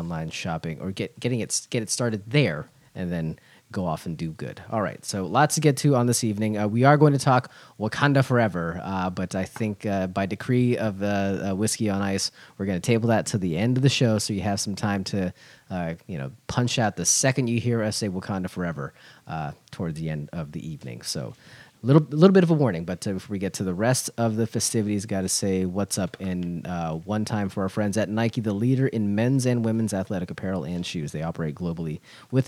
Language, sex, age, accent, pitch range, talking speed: English, male, 30-49, American, 95-130 Hz, 245 wpm